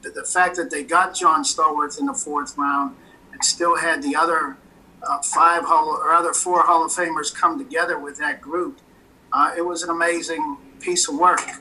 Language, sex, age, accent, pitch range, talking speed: English, male, 50-69, American, 165-195 Hz, 195 wpm